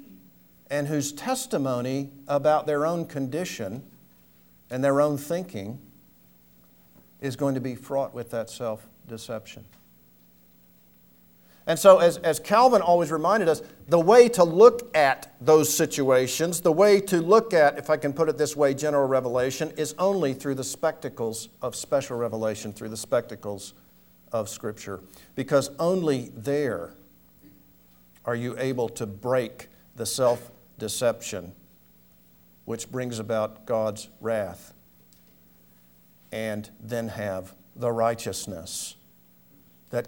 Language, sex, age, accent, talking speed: English, male, 50-69, American, 125 wpm